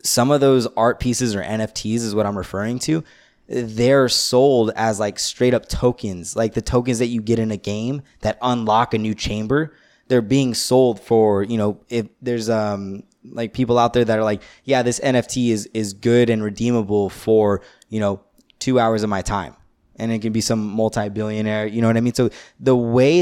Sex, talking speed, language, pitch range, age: male, 205 wpm, English, 105-125 Hz, 20-39